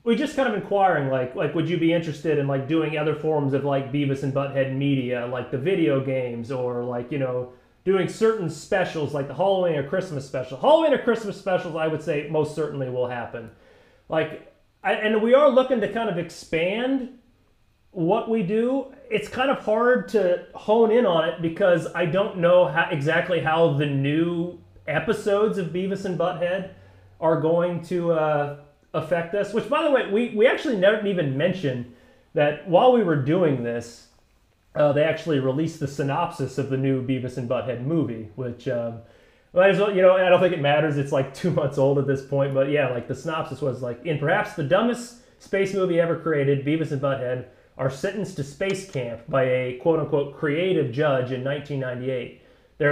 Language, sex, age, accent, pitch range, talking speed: English, male, 30-49, American, 135-195 Hz, 195 wpm